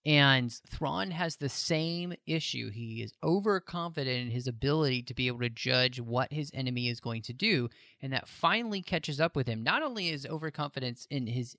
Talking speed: 190 wpm